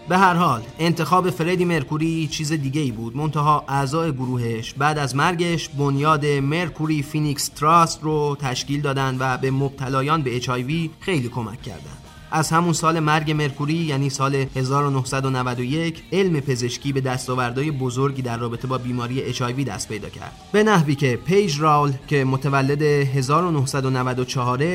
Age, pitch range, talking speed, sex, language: 30-49, 130-155 Hz, 145 wpm, male, Persian